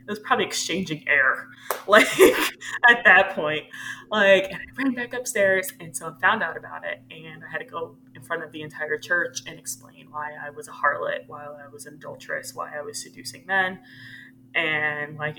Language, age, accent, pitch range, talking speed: English, 20-39, American, 145-190 Hz, 205 wpm